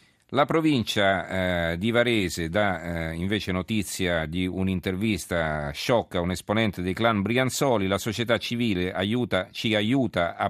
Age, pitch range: 40-59, 85-115 Hz